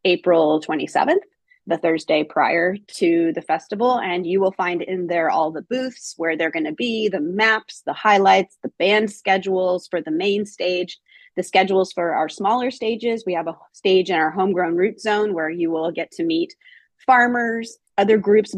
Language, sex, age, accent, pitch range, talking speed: English, female, 30-49, American, 175-225 Hz, 185 wpm